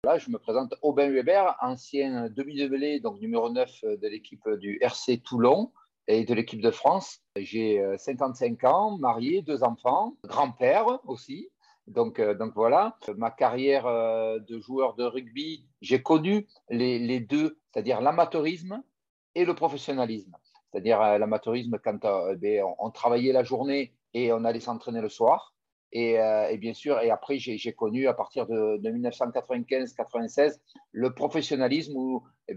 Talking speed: 145 wpm